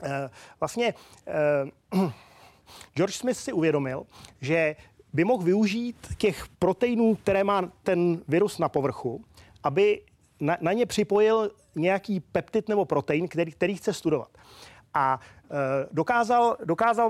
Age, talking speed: 30-49, 115 wpm